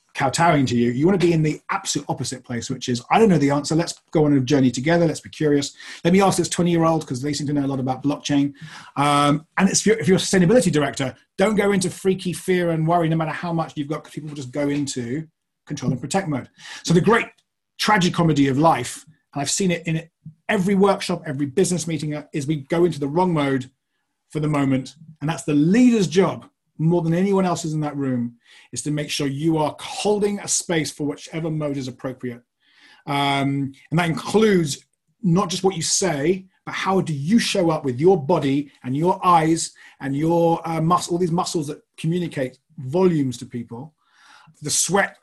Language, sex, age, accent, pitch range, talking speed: English, male, 30-49, British, 140-175 Hz, 220 wpm